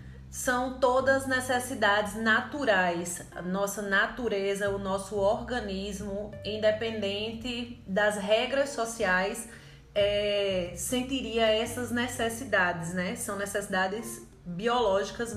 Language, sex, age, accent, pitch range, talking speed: Portuguese, female, 20-39, Brazilian, 185-240 Hz, 80 wpm